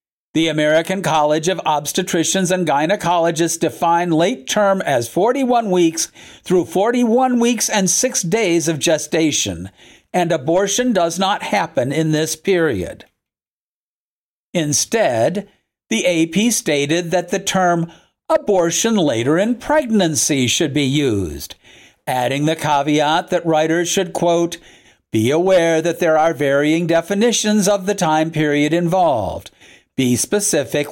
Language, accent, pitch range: English, American, 155-190 Hz